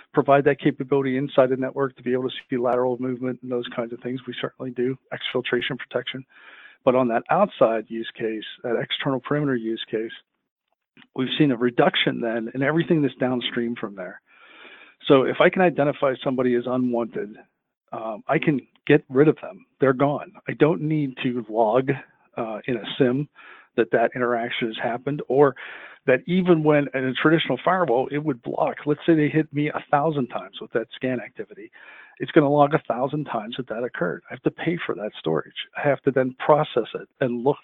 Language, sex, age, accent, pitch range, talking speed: English, male, 50-69, American, 120-145 Hz, 195 wpm